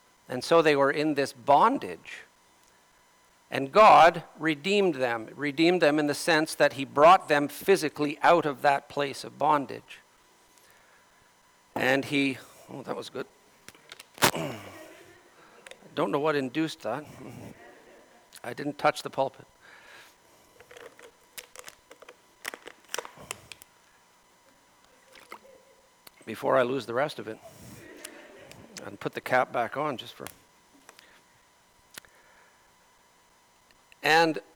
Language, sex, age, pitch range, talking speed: English, male, 50-69, 140-175 Hz, 100 wpm